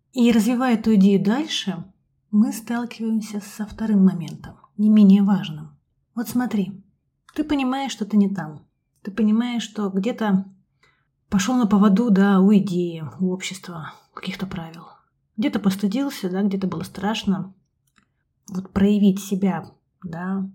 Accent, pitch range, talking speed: native, 195-230 Hz, 135 wpm